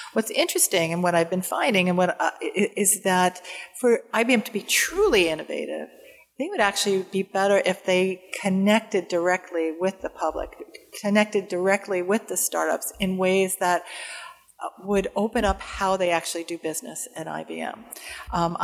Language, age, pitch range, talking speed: English, 50-69, 175-210 Hz, 160 wpm